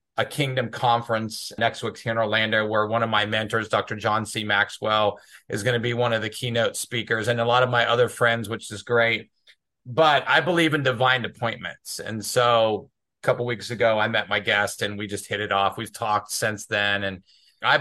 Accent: American